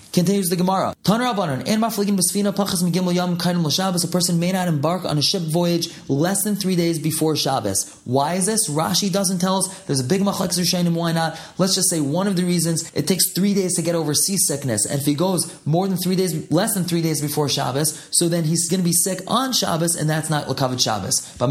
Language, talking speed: English, 220 wpm